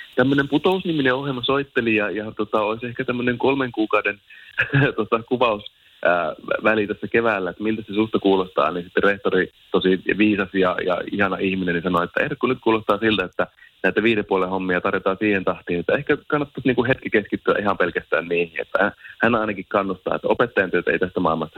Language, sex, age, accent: Finnish, male, 30-49, native